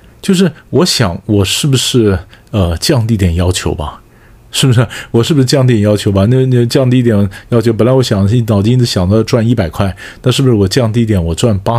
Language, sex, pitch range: Chinese, male, 95-130 Hz